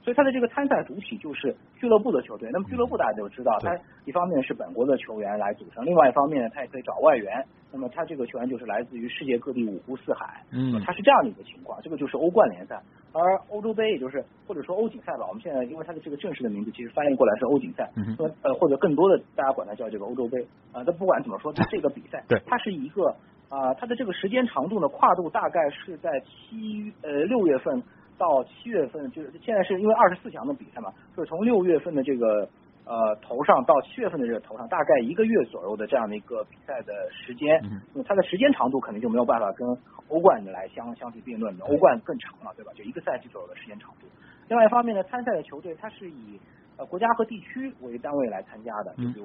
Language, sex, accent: Chinese, male, native